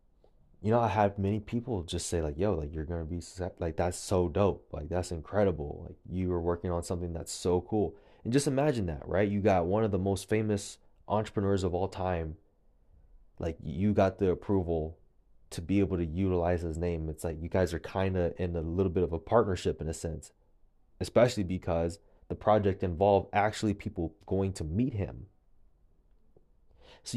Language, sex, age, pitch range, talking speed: English, male, 20-39, 85-105 Hz, 190 wpm